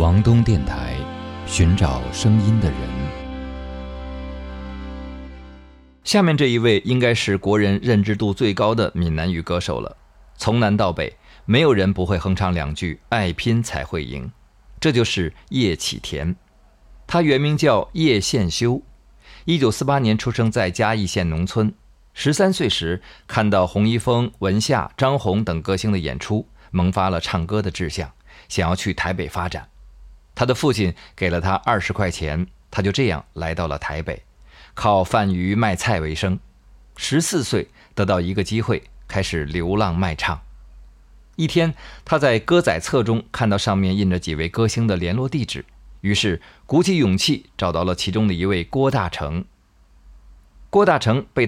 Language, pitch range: Chinese, 80-110 Hz